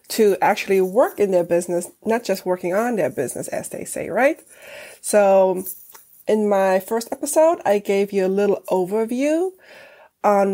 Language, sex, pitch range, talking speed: English, female, 195-245 Hz, 160 wpm